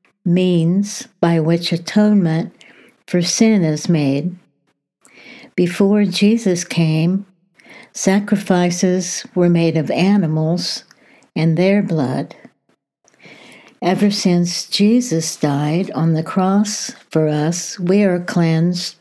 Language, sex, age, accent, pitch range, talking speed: English, female, 60-79, American, 160-200 Hz, 100 wpm